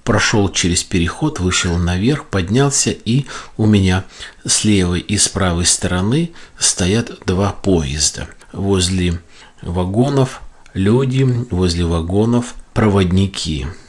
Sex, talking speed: male, 105 wpm